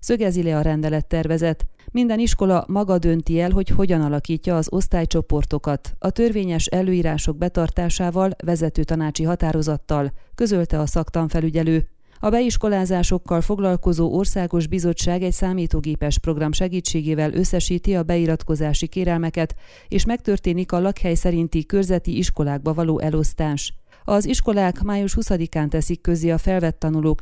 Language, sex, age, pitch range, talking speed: Hungarian, female, 30-49, 160-185 Hz, 120 wpm